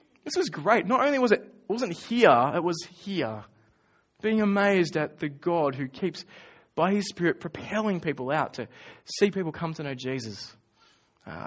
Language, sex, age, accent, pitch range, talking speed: English, male, 20-39, Australian, 140-200 Hz, 175 wpm